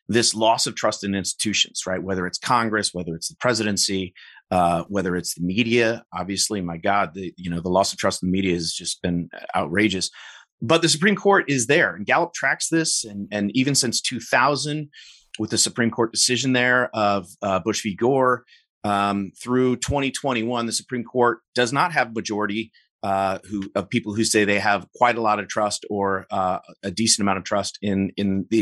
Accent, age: American, 30-49